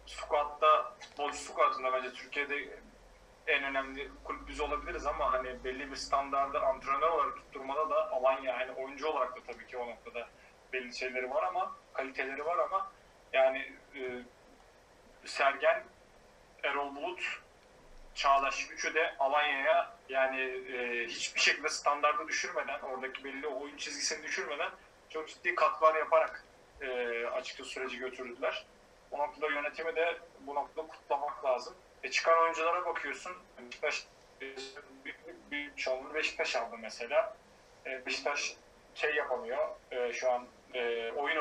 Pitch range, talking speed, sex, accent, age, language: 130-155 Hz, 130 wpm, male, native, 30-49, Turkish